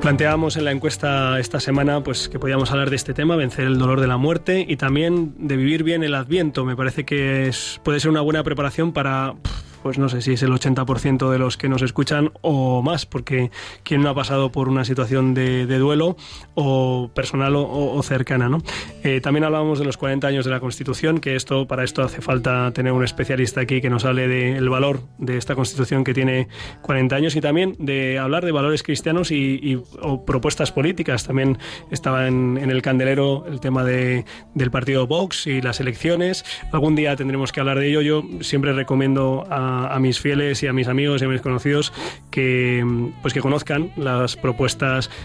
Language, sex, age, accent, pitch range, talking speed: Spanish, male, 20-39, Spanish, 130-145 Hz, 205 wpm